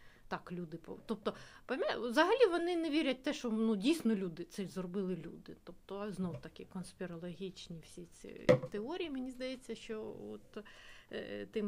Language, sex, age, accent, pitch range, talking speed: Ukrainian, female, 30-49, native, 185-235 Hz, 155 wpm